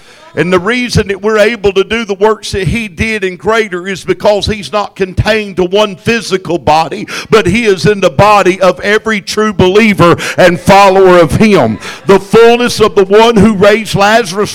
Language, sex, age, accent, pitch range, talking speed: English, male, 50-69, American, 185-215 Hz, 190 wpm